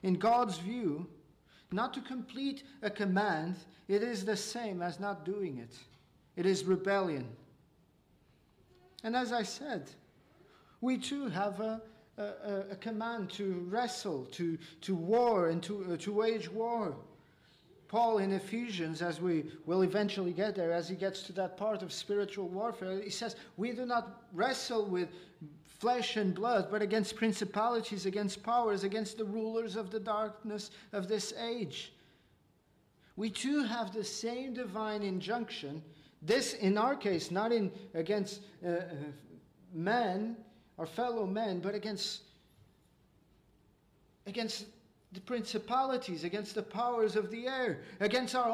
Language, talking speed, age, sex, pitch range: English, 145 wpm, 40-59, male, 180-225 Hz